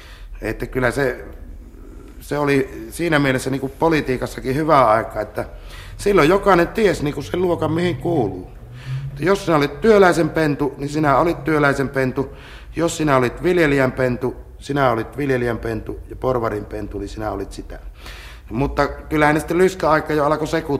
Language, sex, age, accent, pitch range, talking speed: Finnish, male, 60-79, native, 105-135 Hz, 155 wpm